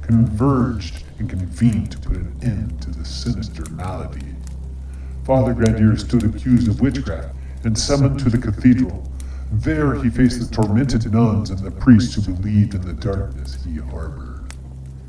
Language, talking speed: English, 150 wpm